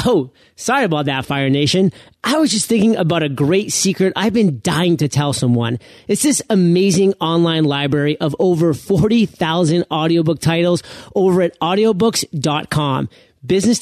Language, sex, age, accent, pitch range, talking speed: English, male, 30-49, American, 155-215 Hz, 150 wpm